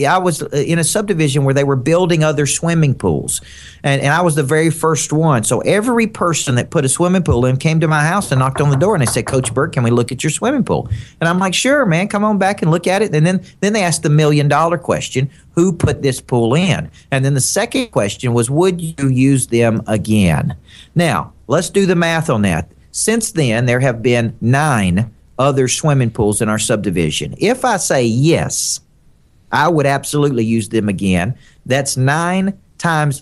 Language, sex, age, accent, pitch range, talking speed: English, male, 50-69, American, 115-160 Hz, 215 wpm